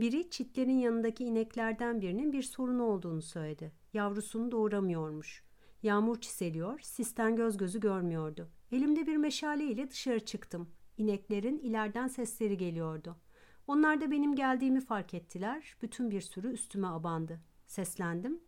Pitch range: 195-260 Hz